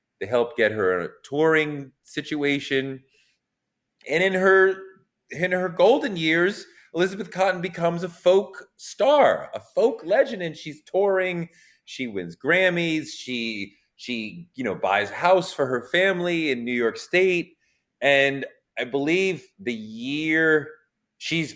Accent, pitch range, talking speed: American, 130-185 Hz, 135 wpm